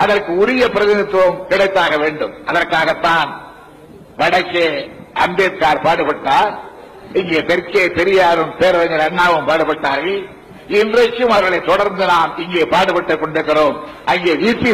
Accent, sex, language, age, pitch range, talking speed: native, male, Tamil, 60-79, 180-210 Hz, 100 wpm